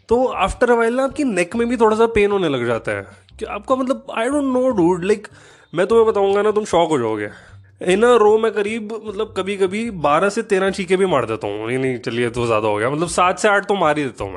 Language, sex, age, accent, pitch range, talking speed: Hindi, male, 20-39, native, 150-210 Hz, 260 wpm